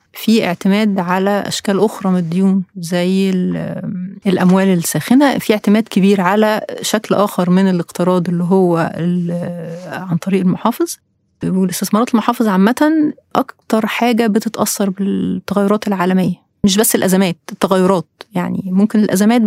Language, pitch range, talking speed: Arabic, 185-220 Hz, 115 wpm